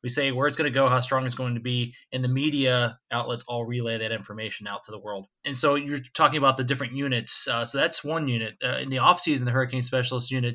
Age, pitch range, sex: 20-39, 120-135 Hz, male